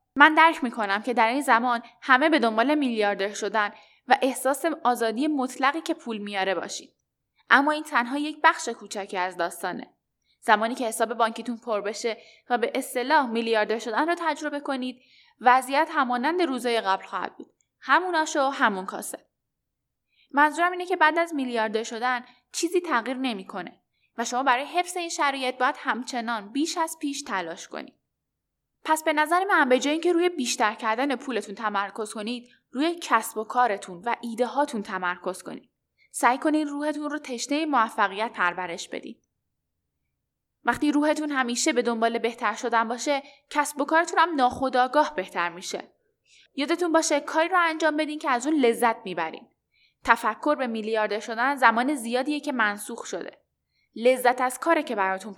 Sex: female